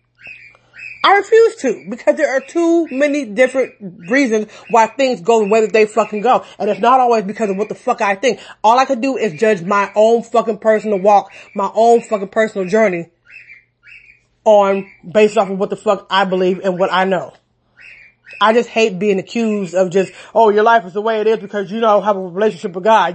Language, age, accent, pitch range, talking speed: English, 30-49, American, 205-250 Hz, 215 wpm